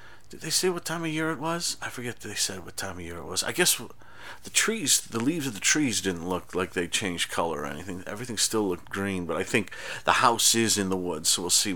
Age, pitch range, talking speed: 40-59, 90-110 Hz, 265 wpm